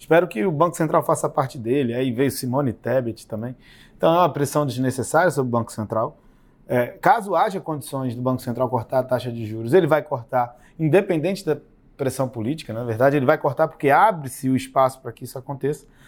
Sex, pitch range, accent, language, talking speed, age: male, 120-145 Hz, Brazilian, Portuguese, 200 wpm, 20-39